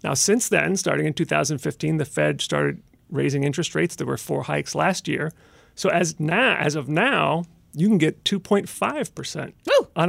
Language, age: English, 40-59